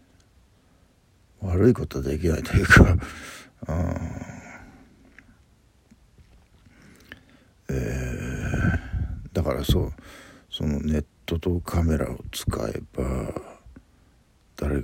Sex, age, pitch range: male, 60-79, 75-105 Hz